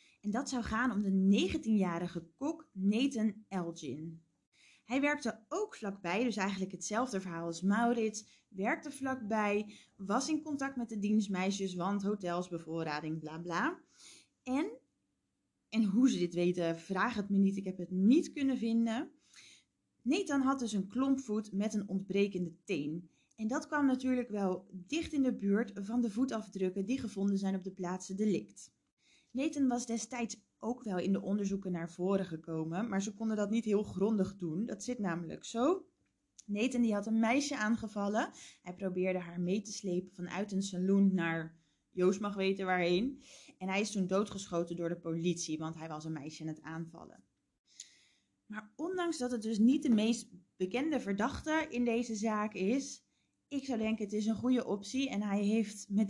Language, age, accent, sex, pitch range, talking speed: Dutch, 20-39, Dutch, female, 185-245 Hz, 175 wpm